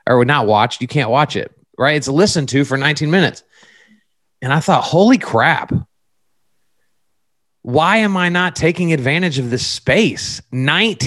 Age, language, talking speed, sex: 30-49, English, 155 wpm, male